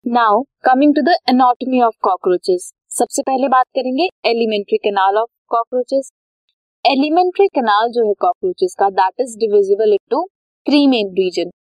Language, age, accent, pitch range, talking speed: Hindi, 20-39, native, 215-310 Hz, 145 wpm